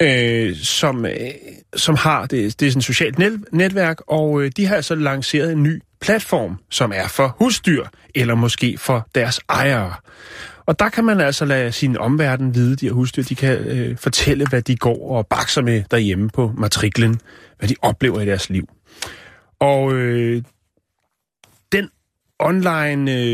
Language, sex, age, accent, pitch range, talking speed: Danish, male, 30-49, native, 120-160 Hz, 165 wpm